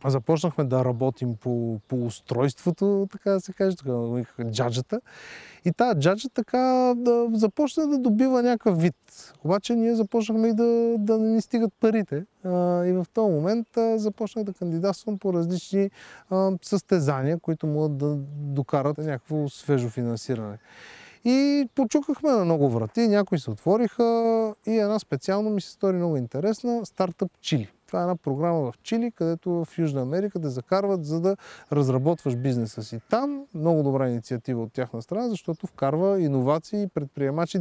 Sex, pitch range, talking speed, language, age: male, 130-195 Hz, 150 wpm, Bulgarian, 20-39